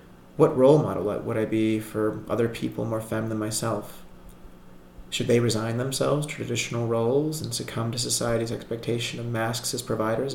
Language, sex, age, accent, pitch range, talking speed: English, male, 30-49, American, 110-130 Hz, 170 wpm